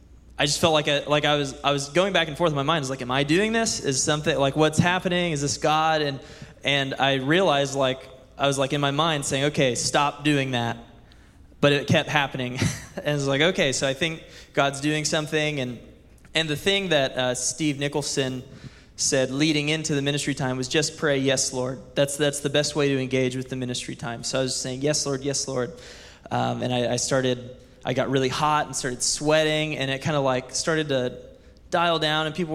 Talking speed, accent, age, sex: 230 wpm, American, 20-39, male